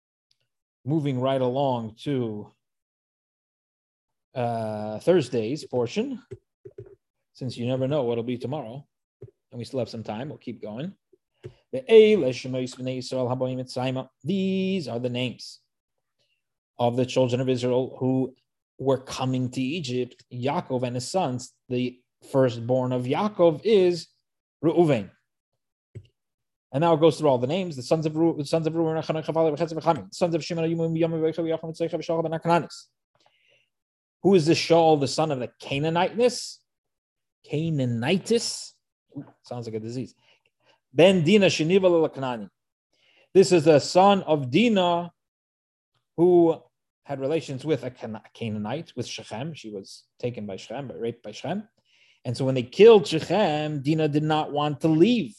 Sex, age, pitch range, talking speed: male, 30-49, 125-165 Hz, 135 wpm